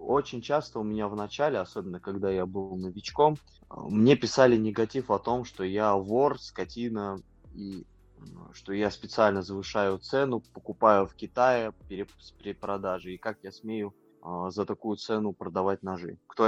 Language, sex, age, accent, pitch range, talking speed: Russian, male, 20-39, native, 95-110 Hz, 155 wpm